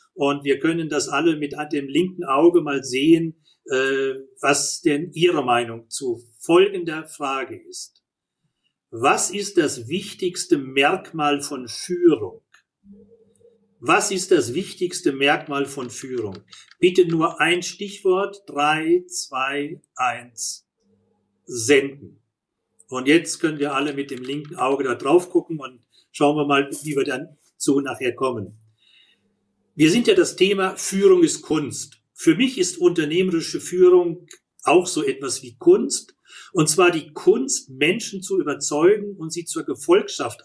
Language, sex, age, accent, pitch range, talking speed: German, male, 40-59, German, 140-205 Hz, 135 wpm